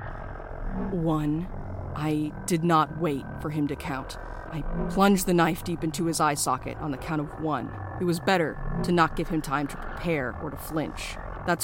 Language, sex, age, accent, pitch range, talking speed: English, female, 30-49, American, 135-170 Hz, 190 wpm